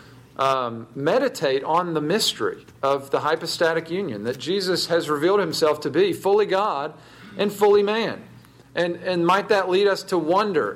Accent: American